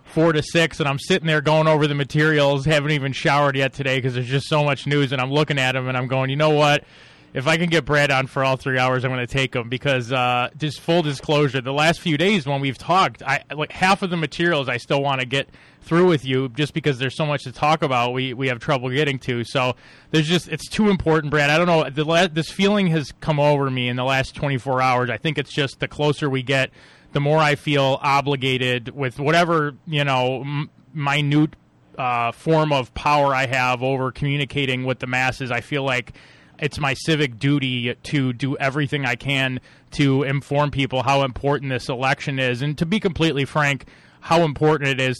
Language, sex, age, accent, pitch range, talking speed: English, male, 20-39, American, 130-150 Hz, 225 wpm